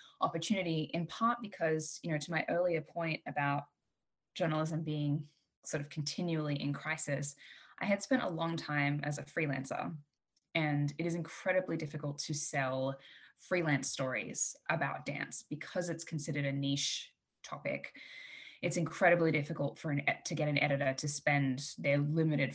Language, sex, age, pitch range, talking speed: English, female, 10-29, 140-155 Hz, 150 wpm